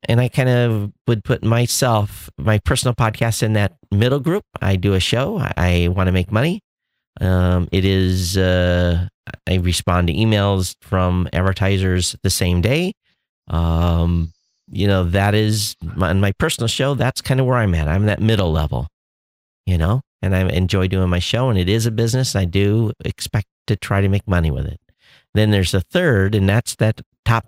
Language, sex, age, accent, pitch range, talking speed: English, male, 50-69, American, 90-115 Hz, 190 wpm